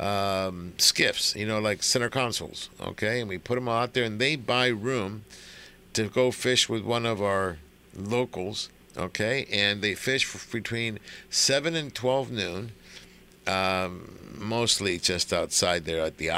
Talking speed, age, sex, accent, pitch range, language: 155 wpm, 60-79, male, American, 90-120 Hz, English